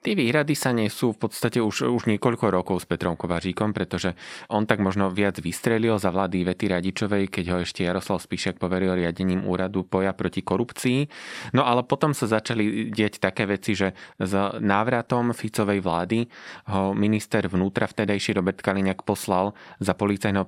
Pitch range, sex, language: 95-110 Hz, male, Slovak